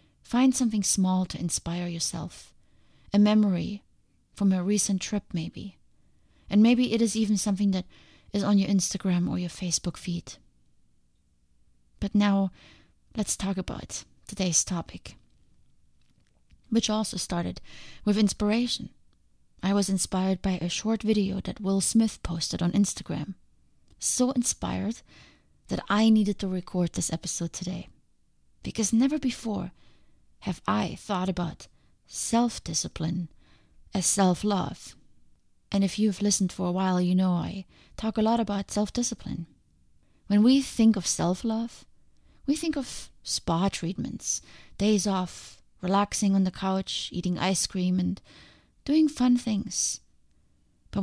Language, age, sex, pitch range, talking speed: English, 30-49, female, 180-210 Hz, 130 wpm